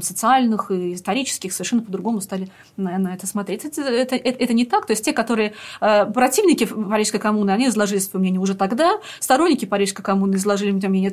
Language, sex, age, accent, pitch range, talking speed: Russian, female, 20-39, native, 190-235 Hz, 175 wpm